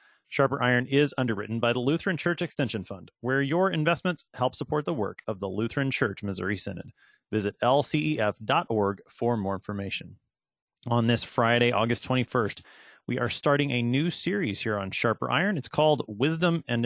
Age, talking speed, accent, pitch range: 30-49, 165 wpm, American, 105-140 Hz